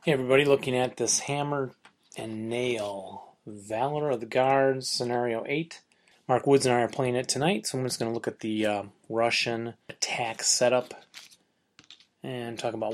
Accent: American